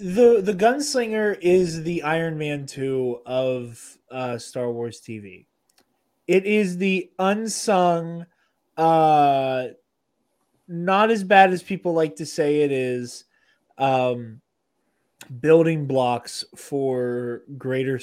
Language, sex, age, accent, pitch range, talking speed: English, male, 20-39, American, 120-145 Hz, 110 wpm